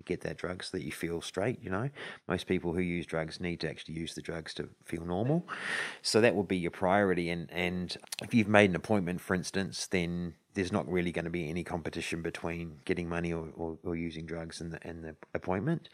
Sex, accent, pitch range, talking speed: male, Australian, 85-95 Hz, 225 wpm